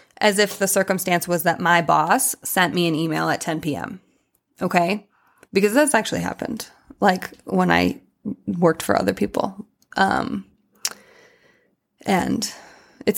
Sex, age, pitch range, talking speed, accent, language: female, 20-39, 180-250 Hz, 135 wpm, American, English